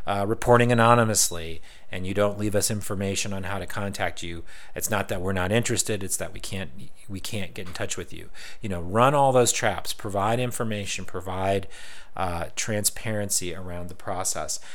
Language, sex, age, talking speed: English, male, 40-59, 185 wpm